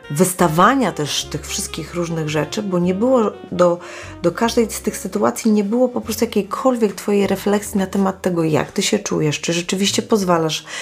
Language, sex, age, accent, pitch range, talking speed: Polish, female, 30-49, native, 160-205 Hz, 175 wpm